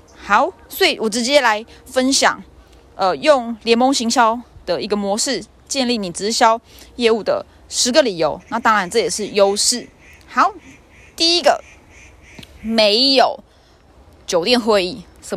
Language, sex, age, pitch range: Chinese, female, 20-39, 205-275 Hz